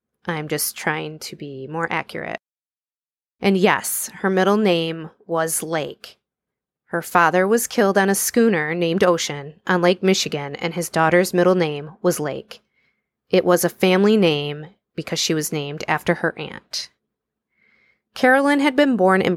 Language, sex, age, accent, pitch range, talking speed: English, female, 20-39, American, 155-190 Hz, 155 wpm